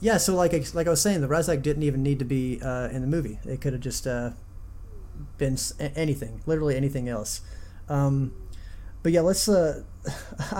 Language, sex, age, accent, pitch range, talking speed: English, male, 30-49, American, 125-150 Hz, 195 wpm